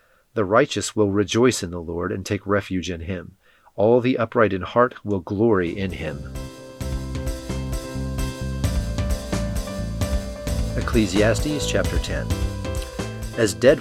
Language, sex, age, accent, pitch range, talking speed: English, male, 40-59, American, 90-110 Hz, 115 wpm